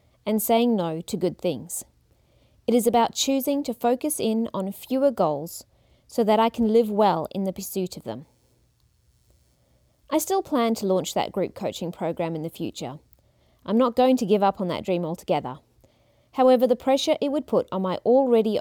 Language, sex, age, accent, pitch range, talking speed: English, female, 30-49, Australian, 180-245 Hz, 185 wpm